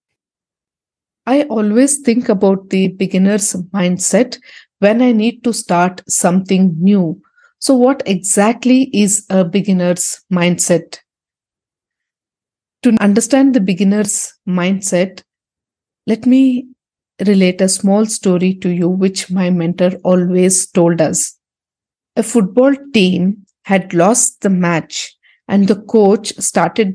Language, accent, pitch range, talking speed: English, Indian, 185-220 Hz, 115 wpm